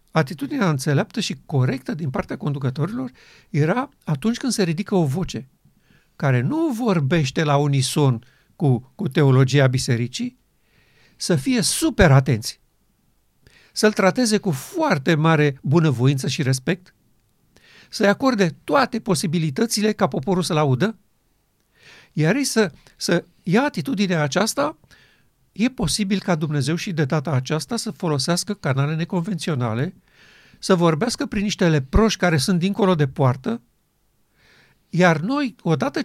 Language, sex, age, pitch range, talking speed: Romanian, male, 60-79, 140-200 Hz, 125 wpm